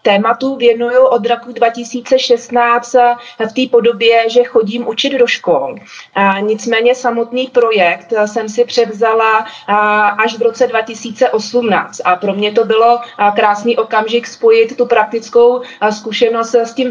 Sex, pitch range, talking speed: female, 210-235 Hz, 130 wpm